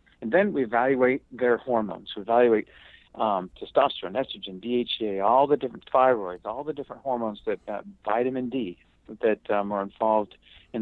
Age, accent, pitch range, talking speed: 50-69, American, 100-125 Hz, 160 wpm